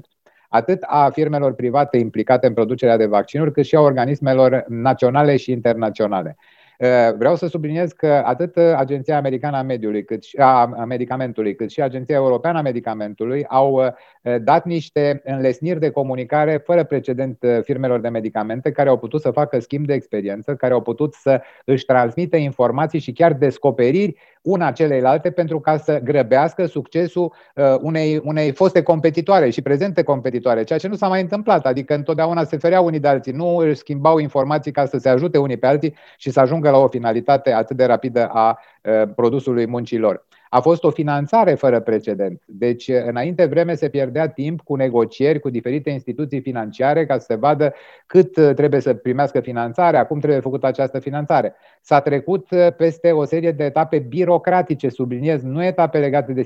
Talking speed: 170 wpm